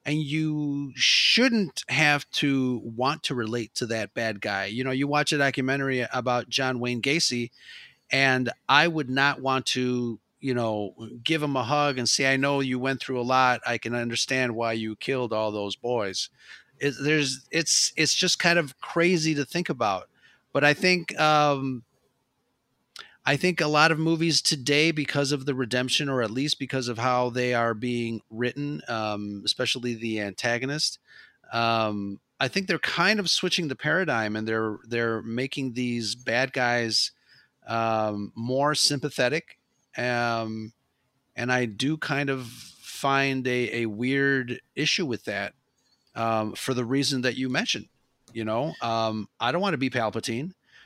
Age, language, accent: 30-49, English, American